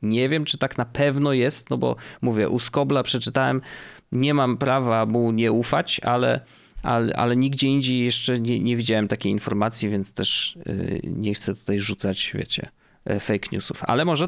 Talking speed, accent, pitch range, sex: 170 wpm, native, 115-150 Hz, male